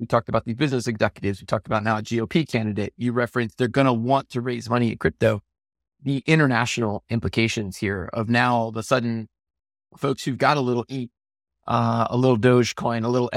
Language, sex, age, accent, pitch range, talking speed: English, male, 30-49, American, 110-130 Hz, 205 wpm